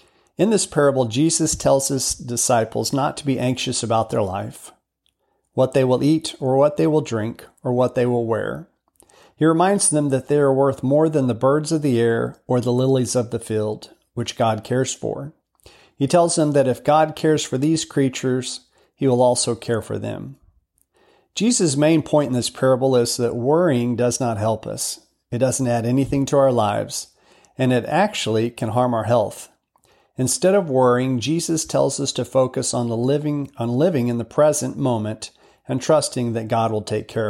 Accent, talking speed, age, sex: American, 190 wpm, 40-59, male